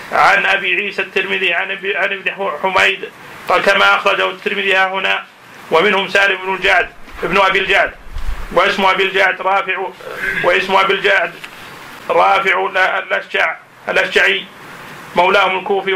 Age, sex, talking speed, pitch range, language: 40-59, male, 115 wpm, 190-195 Hz, Arabic